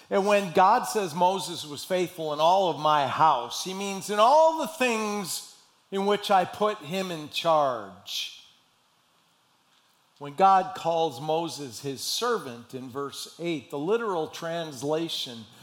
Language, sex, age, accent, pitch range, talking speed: English, male, 50-69, American, 130-180 Hz, 140 wpm